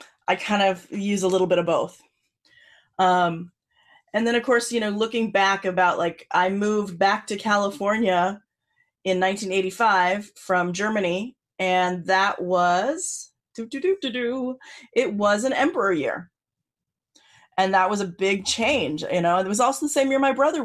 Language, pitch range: English, 185-235 Hz